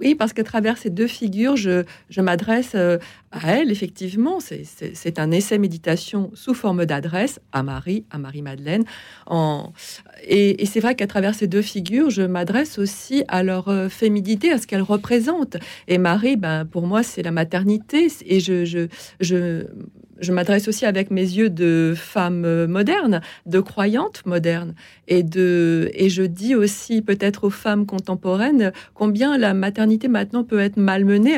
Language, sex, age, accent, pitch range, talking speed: French, female, 40-59, French, 180-225 Hz, 170 wpm